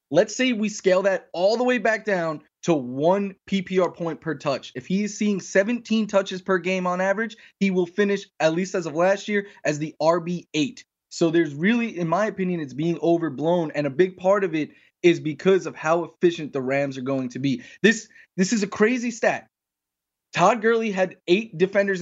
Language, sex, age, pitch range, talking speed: English, male, 20-39, 155-195 Hz, 205 wpm